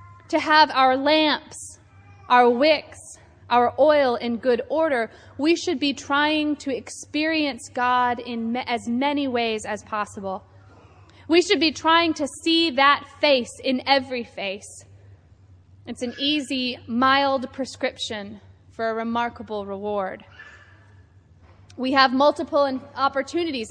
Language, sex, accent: English, female, American